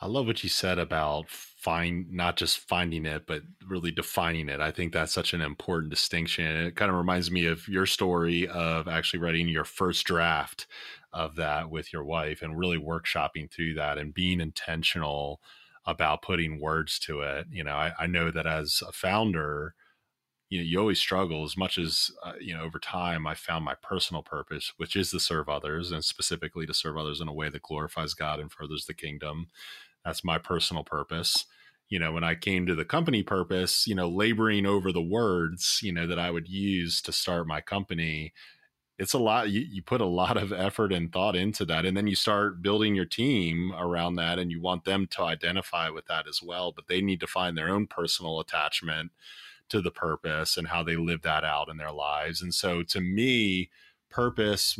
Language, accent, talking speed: English, American, 205 wpm